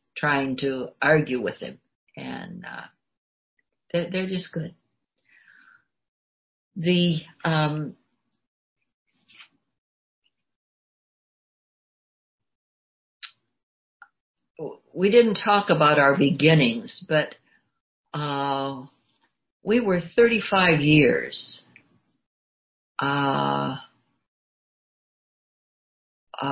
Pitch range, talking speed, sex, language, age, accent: 135-170 Hz, 60 wpm, female, English, 60-79, American